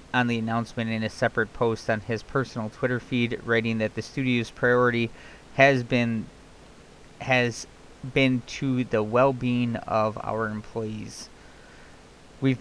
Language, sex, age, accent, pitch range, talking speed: English, male, 30-49, American, 110-125 Hz, 135 wpm